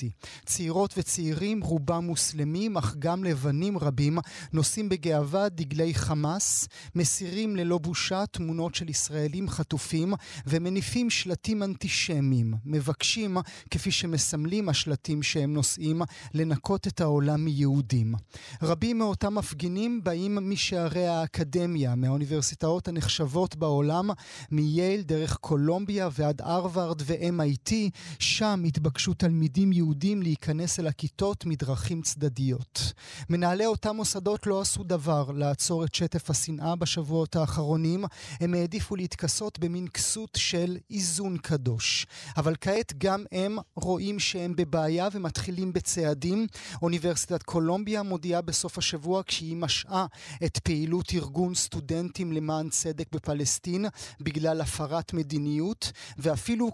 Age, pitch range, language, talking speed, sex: 30-49, 155-185 Hz, Hebrew, 110 wpm, male